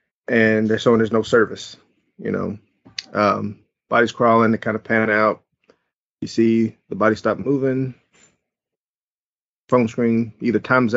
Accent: American